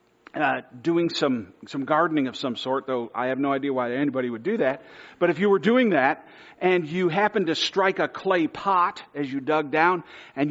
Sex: male